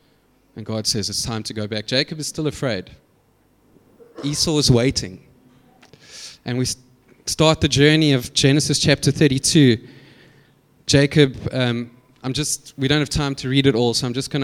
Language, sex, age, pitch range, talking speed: English, male, 20-39, 115-145 Hz, 165 wpm